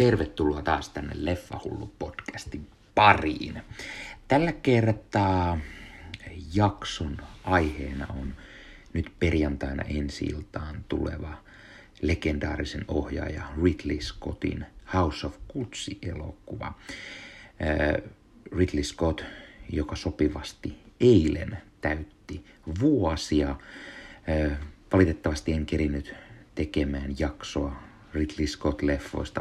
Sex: male